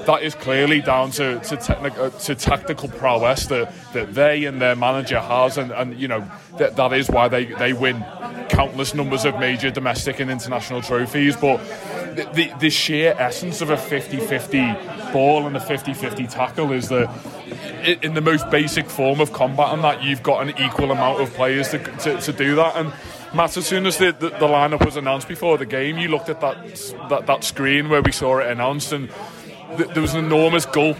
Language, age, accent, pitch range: English, 20-39, British, 130-155 Hz